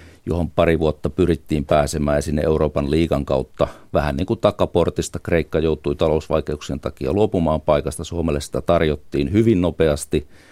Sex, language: male, Finnish